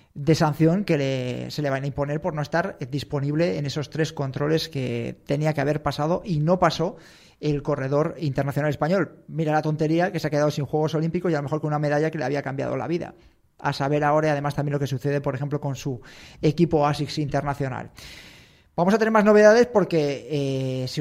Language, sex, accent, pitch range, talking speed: Spanish, male, Spanish, 140-160 Hz, 215 wpm